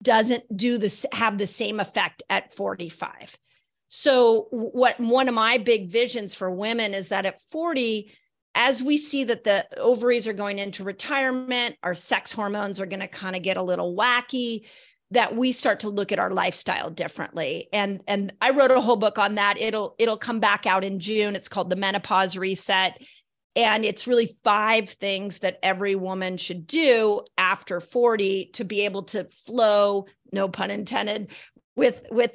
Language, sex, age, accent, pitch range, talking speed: English, female, 40-59, American, 195-245 Hz, 180 wpm